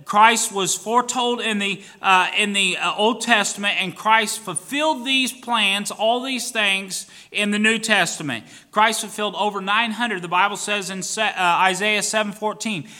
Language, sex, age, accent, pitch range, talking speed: English, male, 30-49, American, 195-235 Hz, 170 wpm